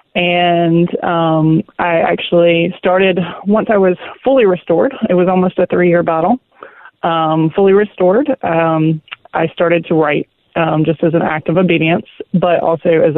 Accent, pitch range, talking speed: American, 165-190 Hz, 160 wpm